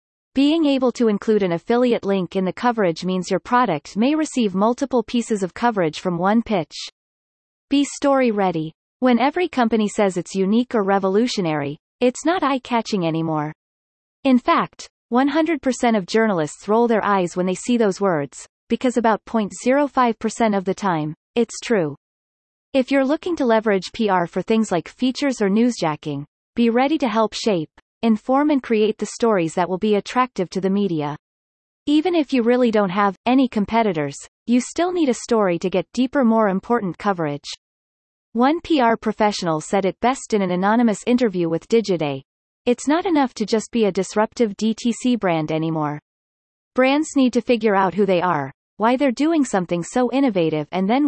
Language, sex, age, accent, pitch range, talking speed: English, female, 30-49, American, 185-250 Hz, 170 wpm